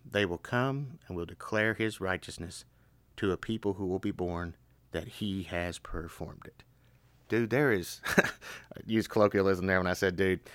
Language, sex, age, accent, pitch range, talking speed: English, male, 30-49, American, 90-120 Hz, 175 wpm